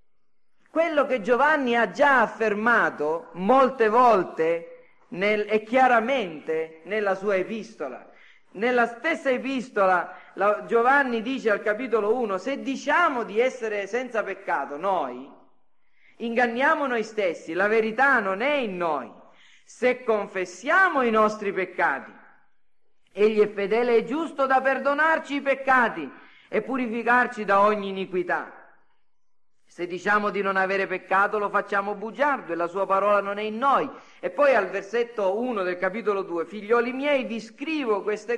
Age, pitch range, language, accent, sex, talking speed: 40-59, 200-270 Hz, Italian, native, male, 140 wpm